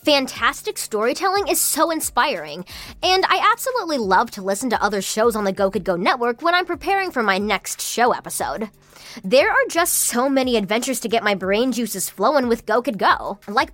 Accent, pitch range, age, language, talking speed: American, 195-285 Hz, 20-39, English, 195 wpm